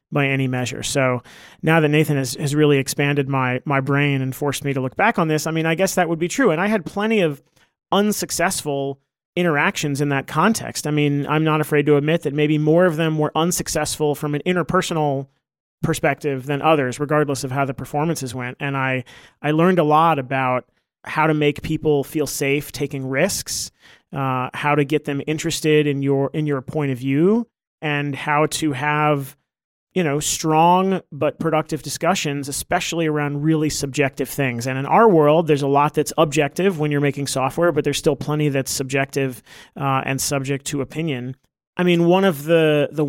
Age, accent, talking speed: 30-49, American, 195 wpm